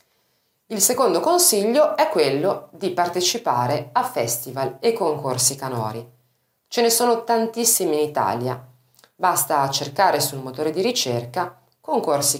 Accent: native